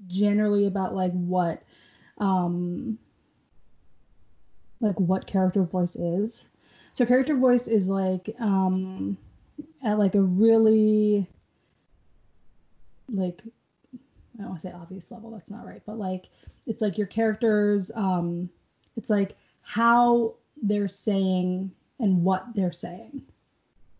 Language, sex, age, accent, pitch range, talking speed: English, female, 20-39, American, 185-220 Hz, 120 wpm